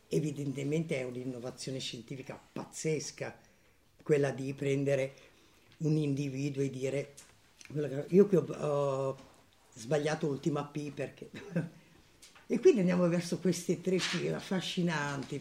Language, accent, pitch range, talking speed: Italian, native, 140-175 Hz, 105 wpm